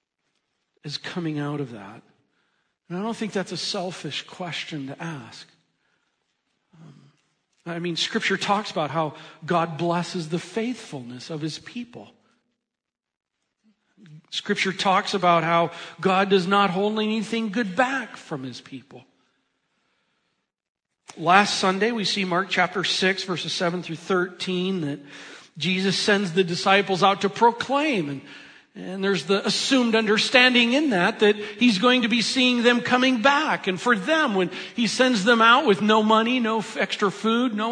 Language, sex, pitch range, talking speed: English, male, 170-225 Hz, 150 wpm